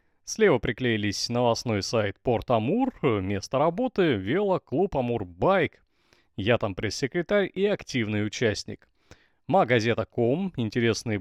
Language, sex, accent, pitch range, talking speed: Russian, male, native, 105-150 Hz, 105 wpm